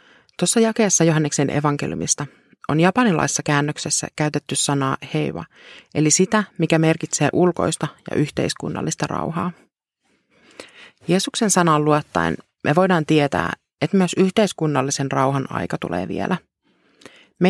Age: 30-49